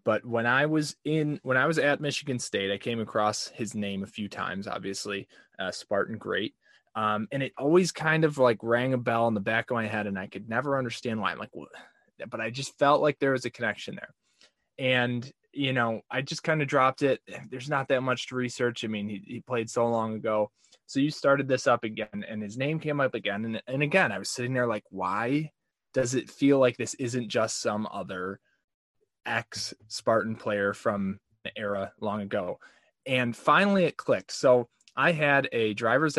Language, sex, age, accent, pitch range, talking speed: English, male, 20-39, American, 110-135 Hz, 210 wpm